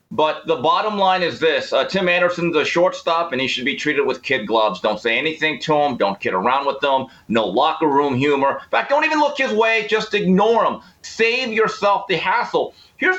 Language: English